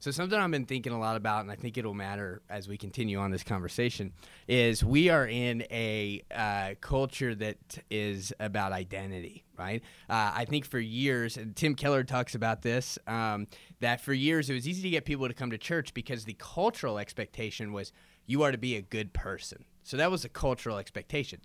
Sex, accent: male, American